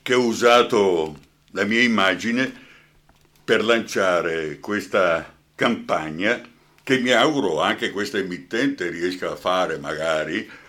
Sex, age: male, 60-79